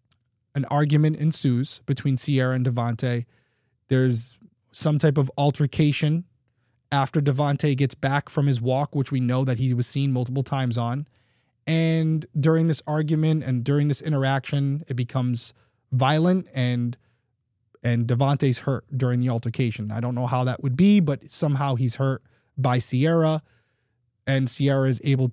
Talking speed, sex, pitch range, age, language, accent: 150 wpm, male, 120-145 Hz, 20-39, English, American